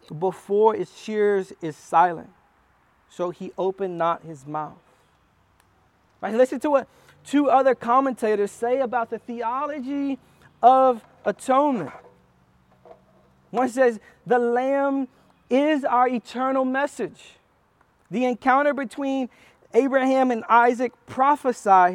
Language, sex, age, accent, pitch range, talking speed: English, male, 40-59, American, 180-255 Hz, 105 wpm